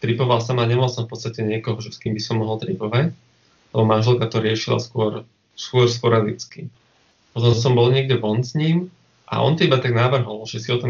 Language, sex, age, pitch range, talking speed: Slovak, male, 20-39, 110-125 Hz, 205 wpm